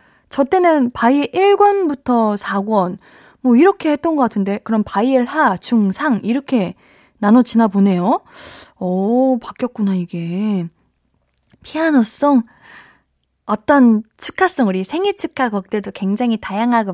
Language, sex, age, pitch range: Korean, female, 20-39, 195-265 Hz